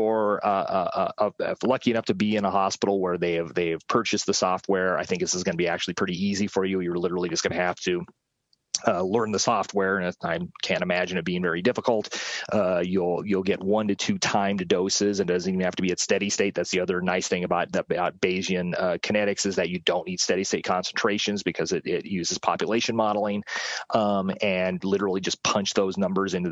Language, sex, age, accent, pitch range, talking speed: Italian, male, 30-49, American, 90-105 Hz, 230 wpm